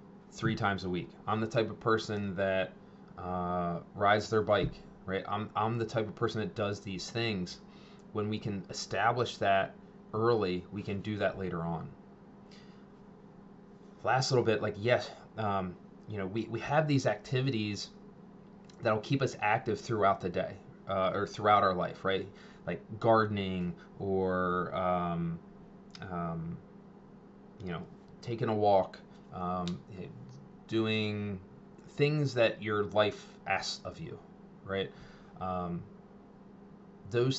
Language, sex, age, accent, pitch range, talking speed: English, male, 20-39, American, 95-150 Hz, 135 wpm